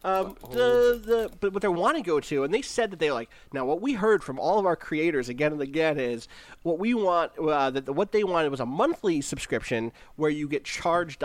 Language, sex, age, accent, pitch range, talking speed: English, male, 30-49, American, 140-200 Hz, 250 wpm